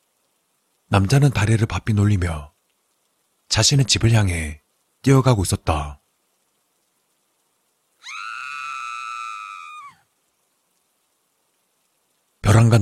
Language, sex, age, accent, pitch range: Korean, male, 40-59, native, 85-120 Hz